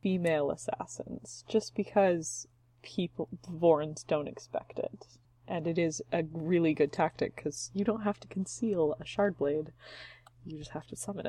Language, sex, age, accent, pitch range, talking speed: English, female, 20-39, American, 120-190 Hz, 155 wpm